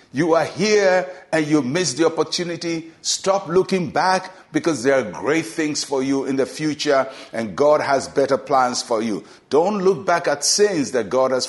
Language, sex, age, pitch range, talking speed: English, male, 60-79, 135-165 Hz, 190 wpm